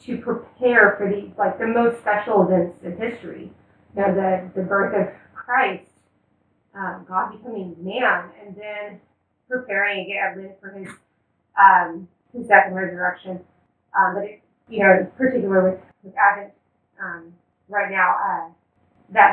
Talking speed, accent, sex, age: 150 wpm, American, female, 20-39